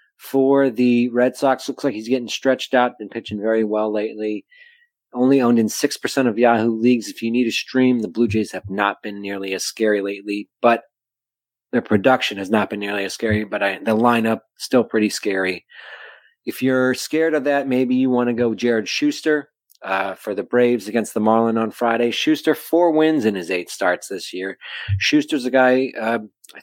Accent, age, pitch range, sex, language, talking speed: American, 30-49, 110-135 Hz, male, English, 200 wpm